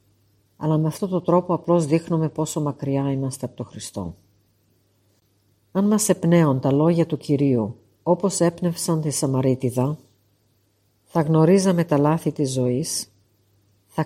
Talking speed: 130 wpm